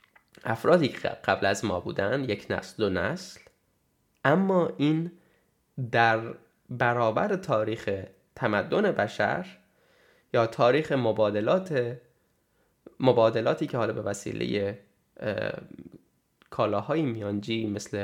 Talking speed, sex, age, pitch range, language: 95 wpm, male, 10-29, 110-150 Hz, Persian